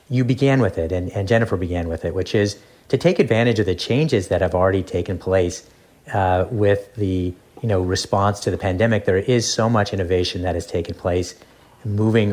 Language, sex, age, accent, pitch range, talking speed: English, male, 40-59, American, 95-110 Hz, 205 wpm